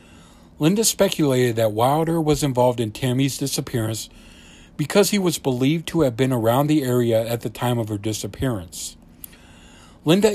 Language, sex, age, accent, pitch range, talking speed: English, male, 60-79, American, 100-140 Hz, 150 wpm